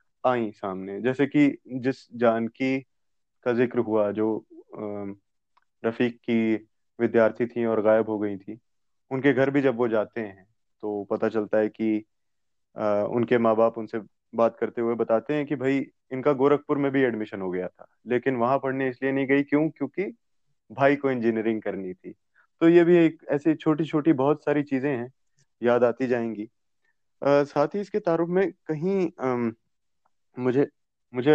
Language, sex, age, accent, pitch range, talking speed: Hindi, male, 20-39, native, 110-140 Hz, 160 wpm